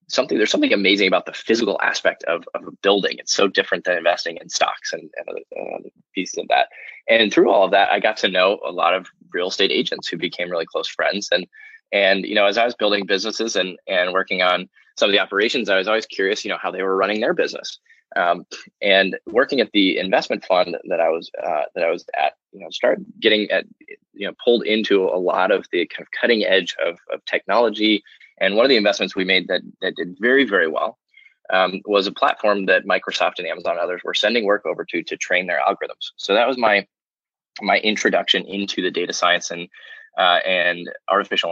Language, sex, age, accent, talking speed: English, male, 20-39, American, 225 wpm